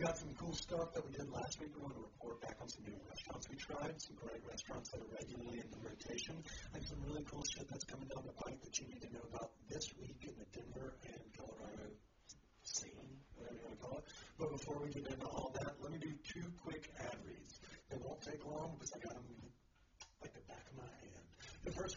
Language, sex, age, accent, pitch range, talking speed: English, male, 60-79, American, 125-155 Hz, 230 wpm